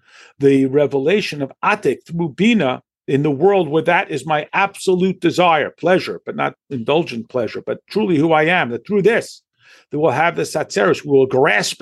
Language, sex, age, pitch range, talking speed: English, male, 50-69, 140-190 Hz, 185 wpm